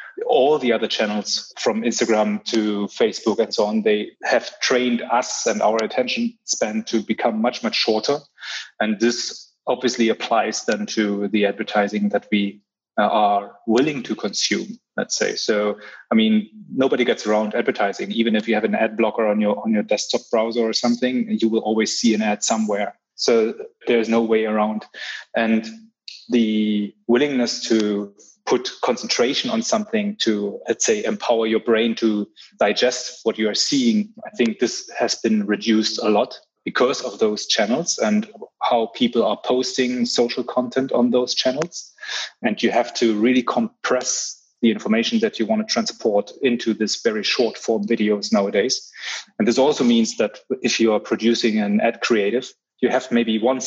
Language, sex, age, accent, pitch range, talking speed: English, male, 30-49, German, 110-125 Hz, 170 wpm